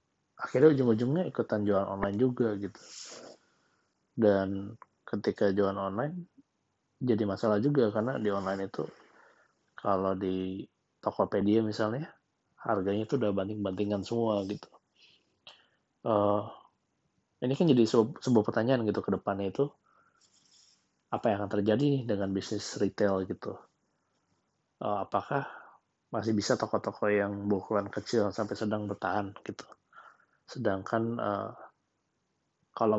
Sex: male